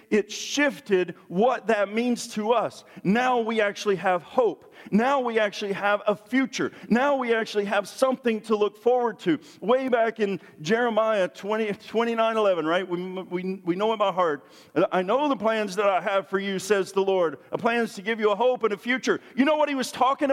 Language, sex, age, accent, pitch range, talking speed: English, male, 50-69, American, 205-270 Hz, 210 wpm